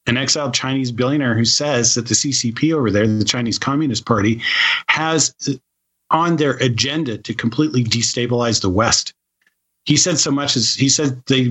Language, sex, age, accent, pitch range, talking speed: English, male, 40-59, American, 115-140 Hz, 165 wpm